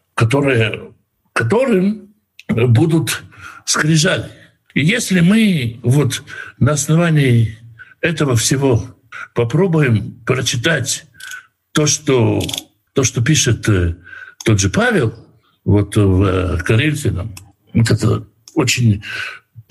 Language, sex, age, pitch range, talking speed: Russian, male, 60-79, 115-165 Hz, 85 wpm